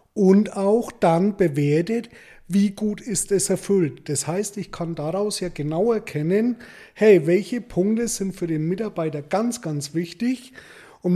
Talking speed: 150 wpm